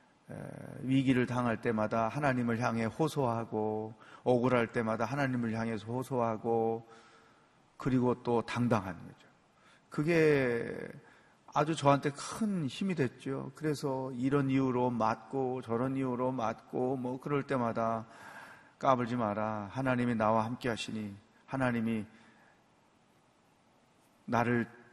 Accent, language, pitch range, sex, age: native, Korean, 115-155 Hz, male, 40-59